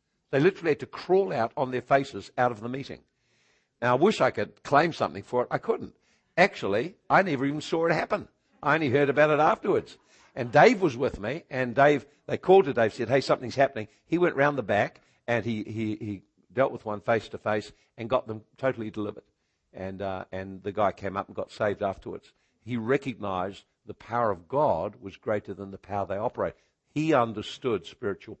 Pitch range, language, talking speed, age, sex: 100-130 Hz, English, 210 wpm, 60-79, male